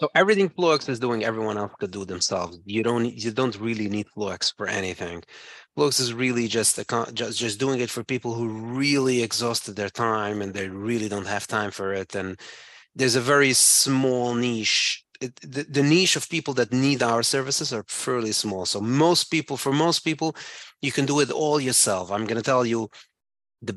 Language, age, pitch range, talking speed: English, 30-49, 105-135 Hz, 200 wpm